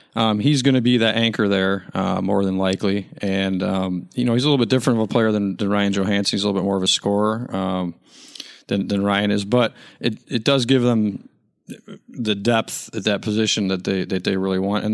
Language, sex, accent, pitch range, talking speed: English, male, American, 100-120 Hz, 235 wpm